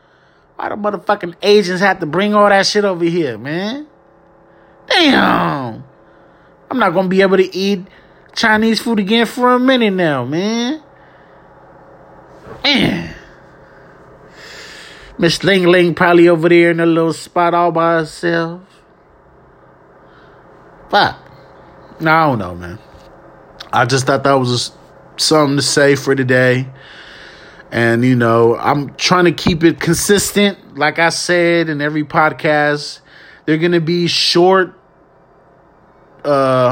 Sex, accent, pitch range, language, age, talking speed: male, American, 135-175 Hz, English, 30-49, 130 wpm